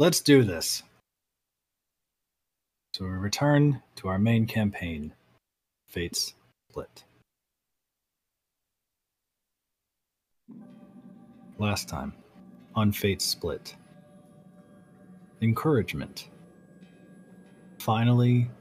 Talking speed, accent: 60 wpm, American